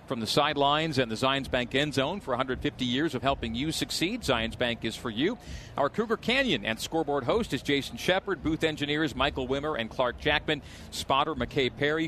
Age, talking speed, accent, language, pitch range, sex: 40-59, 200 wpm, American, English, 125-155 Hz, male